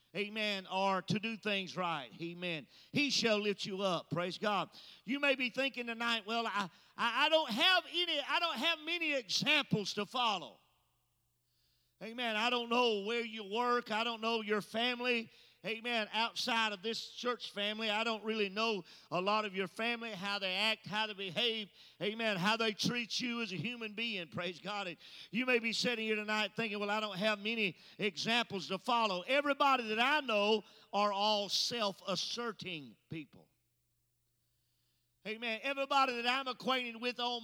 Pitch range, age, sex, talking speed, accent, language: 190-240 Hz, 40-59, male, 170 wpm, American, English